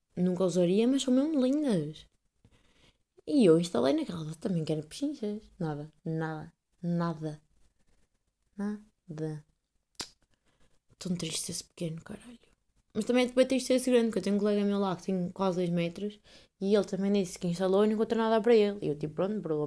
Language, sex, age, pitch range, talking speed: Portuguese, female, 20-39, 165-210 Hz, 175 wpm